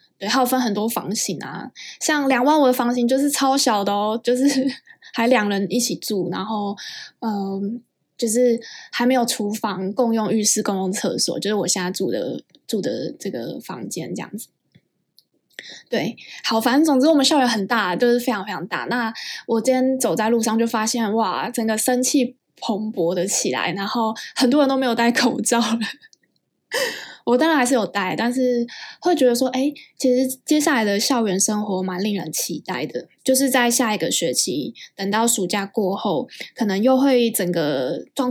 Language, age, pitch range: Chinese, 10-29, 205-260 Hz